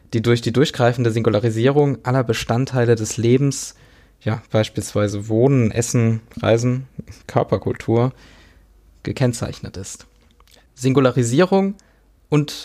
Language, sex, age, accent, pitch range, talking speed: German, male, 20-39, German, 110-130 Hz, 90 wpm